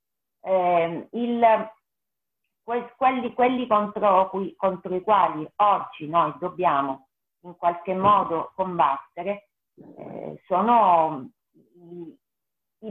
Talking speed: 85 wpm